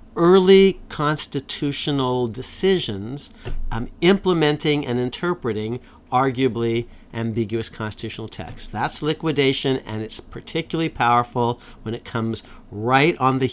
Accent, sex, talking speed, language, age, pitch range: American, male, 100 wpm, English, 50-69, 115-150 Hz